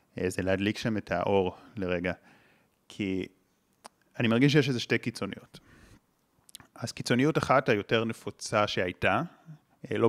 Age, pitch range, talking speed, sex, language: 30-49, 100-130 Hz, 120 wpm, male, Hebrew